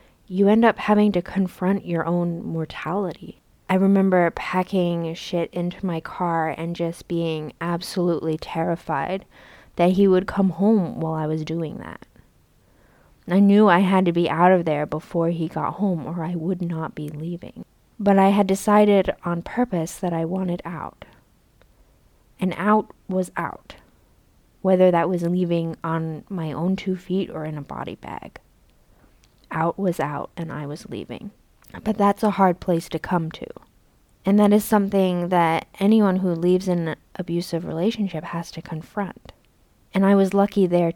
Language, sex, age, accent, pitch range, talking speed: English, female, 20-39, American, 165-195 Hz, 165 wpm